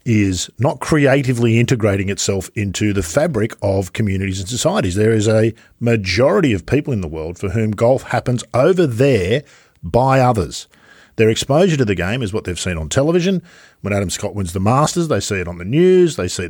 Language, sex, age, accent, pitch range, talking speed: English, male, 50-69, Australian, 100-135 Hz, 195 wpm